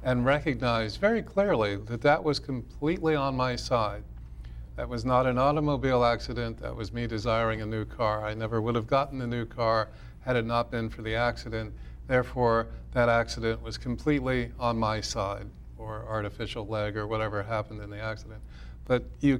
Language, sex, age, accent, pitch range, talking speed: English, male, 40-59, American, 105-130 Hz, 180 wpm